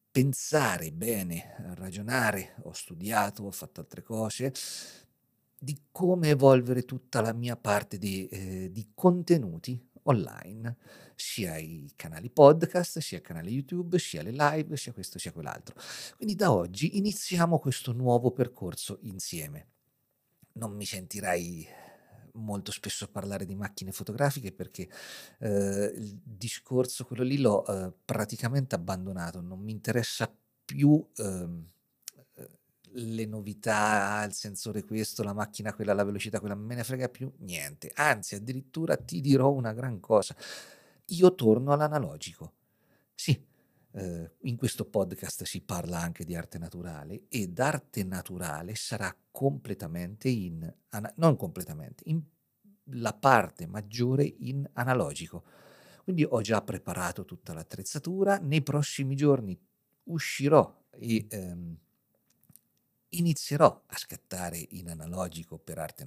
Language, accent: Italian, native